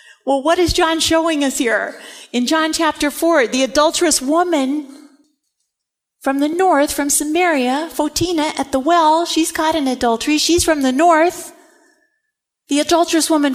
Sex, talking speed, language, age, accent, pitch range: female, 150 wpm, English, 50-69, American, 270-320 Hz